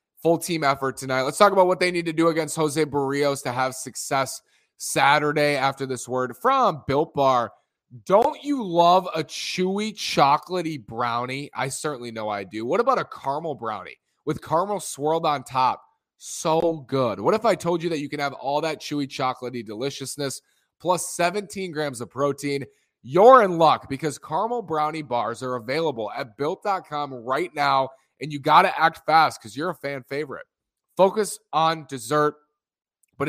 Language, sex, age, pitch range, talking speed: English, male, 20-39, 130-165 Hz, 175 wpm